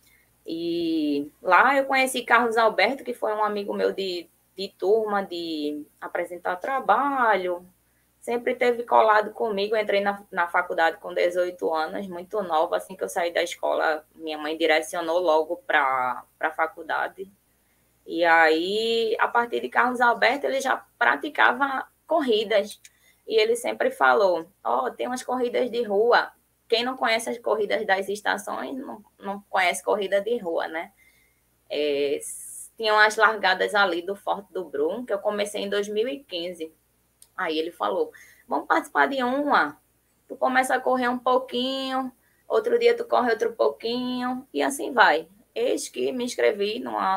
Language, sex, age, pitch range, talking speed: Portuguese, female, 20-39, 165-245 Hz, 150 wpm